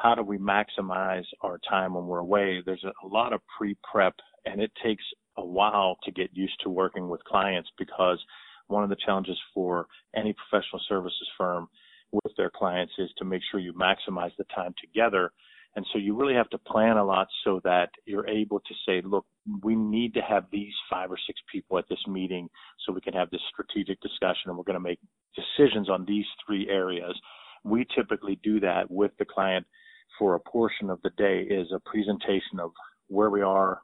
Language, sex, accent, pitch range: English, male, American, 95-105 Hz